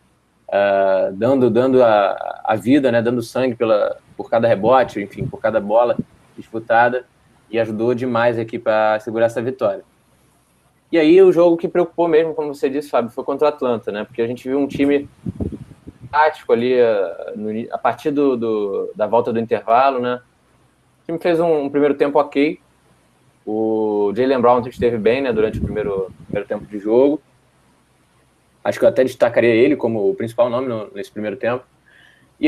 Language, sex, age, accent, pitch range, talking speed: Portuguese, male, 20-39, Brazilian, 110-145 Hz, 180 wpm